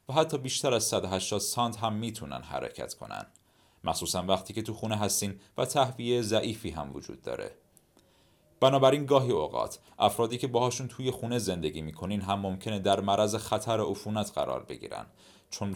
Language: Persian